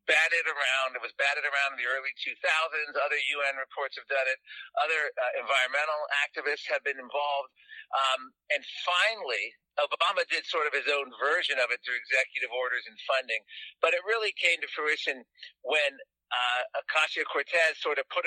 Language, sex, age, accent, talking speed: English, male, 50-69, American, 175 wpm